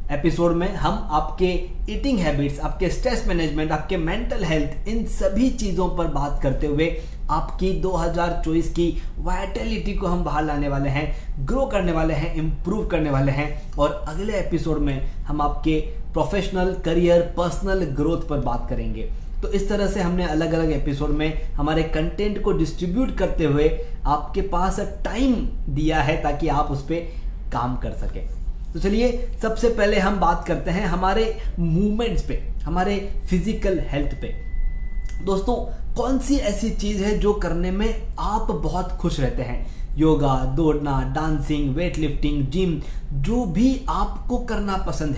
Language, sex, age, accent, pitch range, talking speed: Hindi, male, 20-39, native, 150-200 Hz, 155 wpm